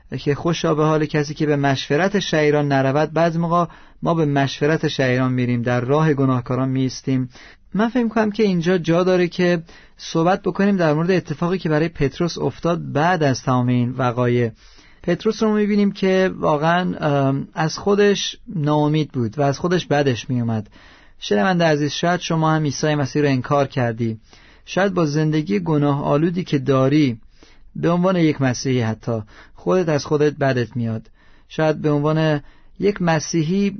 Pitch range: 140-170 Hz